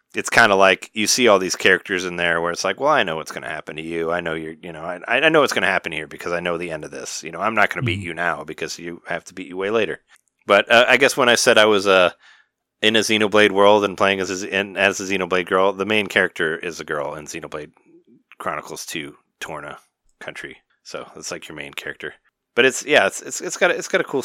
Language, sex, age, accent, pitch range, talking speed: English, male, 30-49, American, 95-115 Hz, 285 wpm